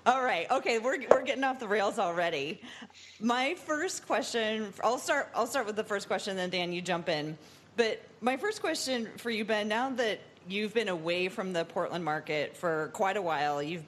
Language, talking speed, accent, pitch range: English, 210 wpm, American, 165-210 Hz